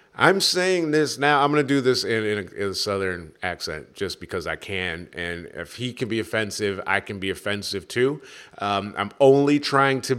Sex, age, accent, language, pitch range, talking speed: male, 30-49, American, English, 90-130 Hz, 205 wpm